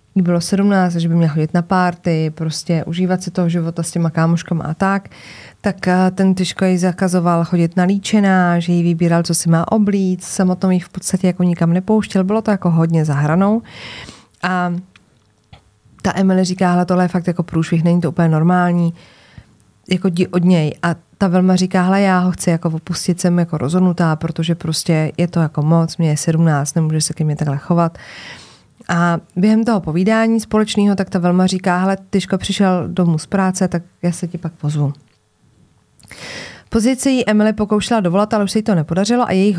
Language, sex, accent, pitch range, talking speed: Czech, female, native, 170-200 Hz, 185 wpm